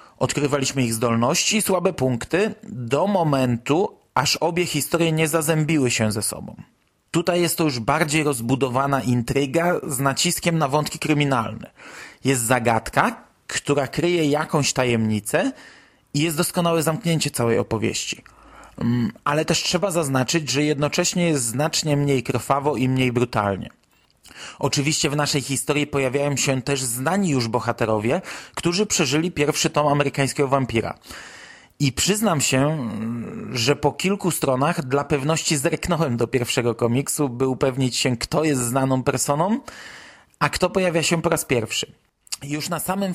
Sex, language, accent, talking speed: male, Polish, native, 140 wpm